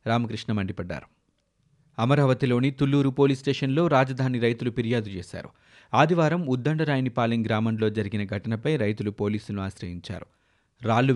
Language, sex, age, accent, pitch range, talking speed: Telugu, male, 30-49, native, 105-135 Hz, 100 wpm